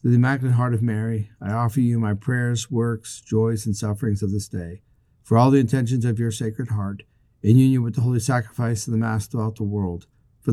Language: English